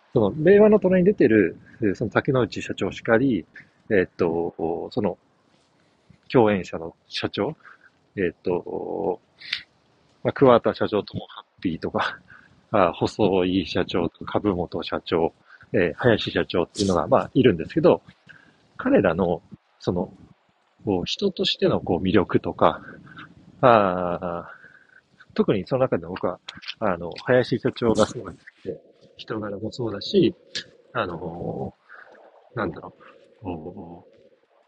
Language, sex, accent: Japanese, male, native